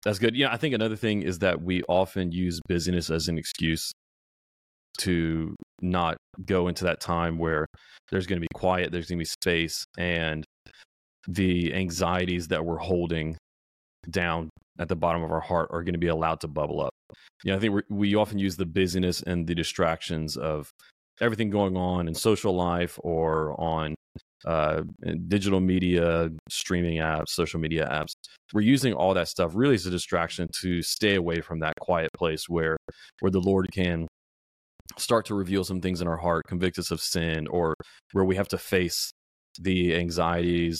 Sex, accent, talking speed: male, American, 180 wpm